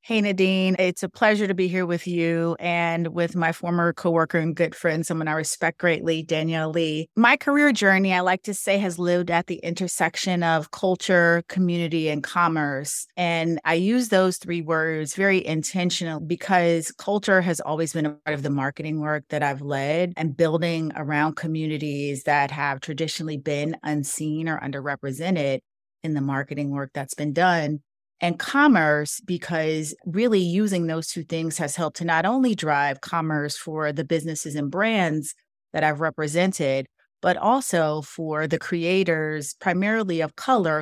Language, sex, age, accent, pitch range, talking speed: English, female, 30-49, American, 150-175 Hz, 165 wpm